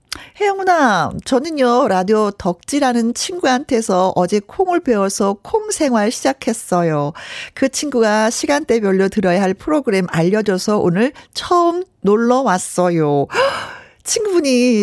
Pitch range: 180-255 Hz